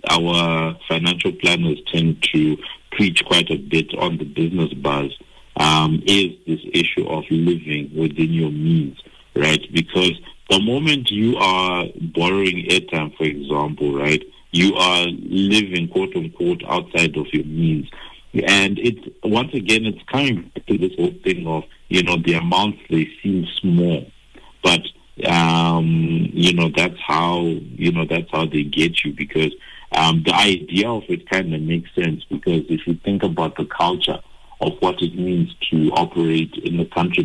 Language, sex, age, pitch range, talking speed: English, male, 50-69, 80-90 Hz, 160 wpm